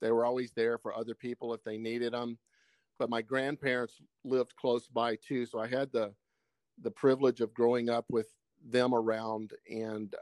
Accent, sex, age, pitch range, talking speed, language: American, male, 50-69, 110-125 Hz, 180 wpm, English